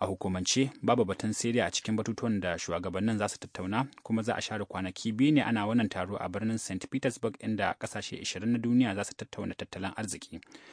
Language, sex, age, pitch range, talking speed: English, male, 30-49, 95-115 Hz, 155 wpm